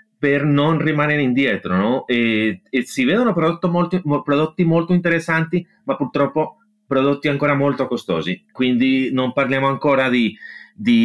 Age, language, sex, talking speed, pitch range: 30-49, Italian, male, 140 wpm, 115-155 Hz